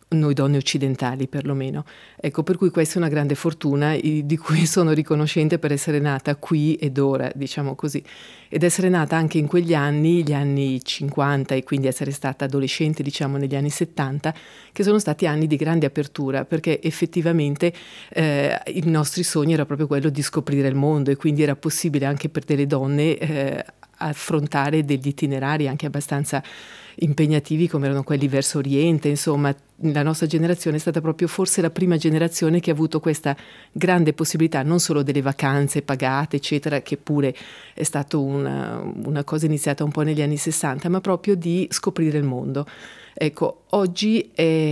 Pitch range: 140-165 Hz